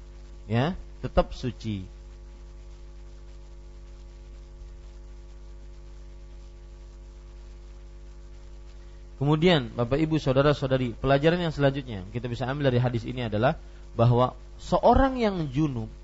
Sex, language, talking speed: male, Malay, 80 wpm